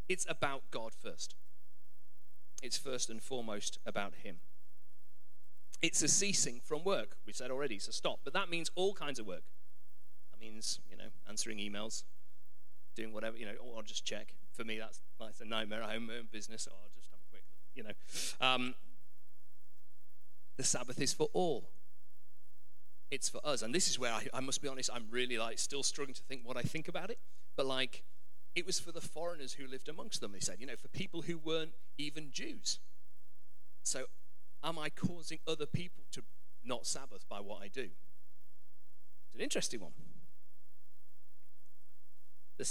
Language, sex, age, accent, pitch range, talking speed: English, male, 40-59, British, 115-155 Hz, 185 wpm